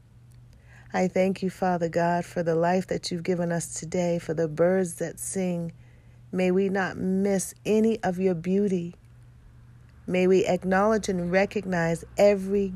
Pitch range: 120-190 Hz